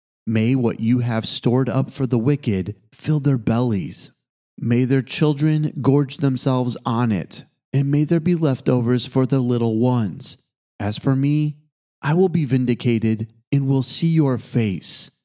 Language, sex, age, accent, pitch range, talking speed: English, male, 30-49, American, 115-140 Hz, 155 wpm